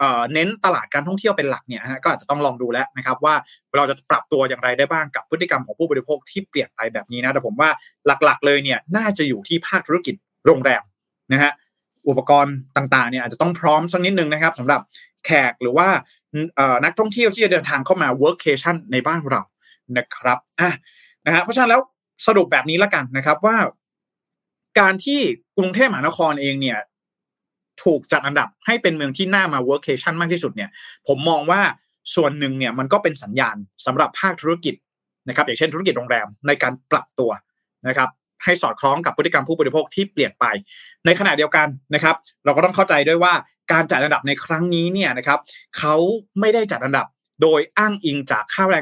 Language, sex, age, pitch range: Thai, male, 20-39, 135-190 Hz